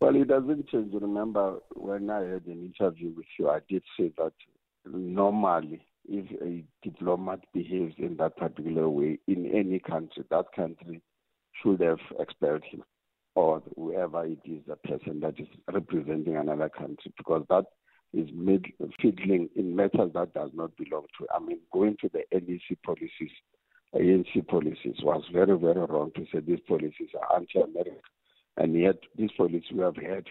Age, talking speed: 50-69, 165 wpm